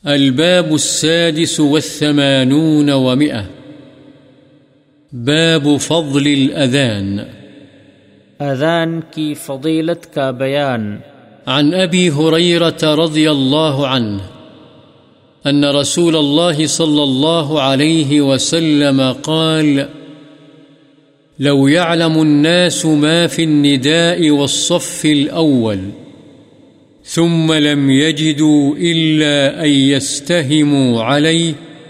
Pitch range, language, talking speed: 135-160 Hz, Urdu, 75 wpm